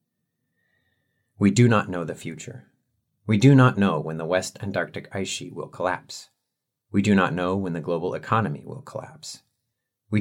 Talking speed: 170 wpm